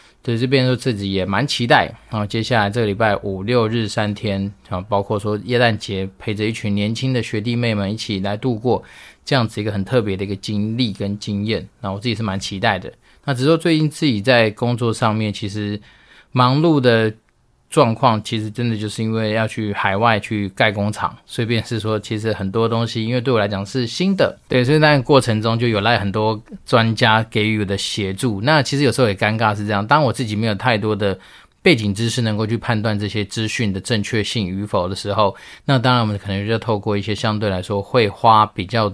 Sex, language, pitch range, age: male, Chinese, 100-120 Hz, 20-39